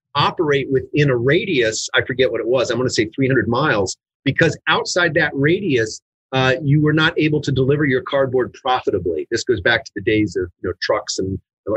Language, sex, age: English, male, 40-59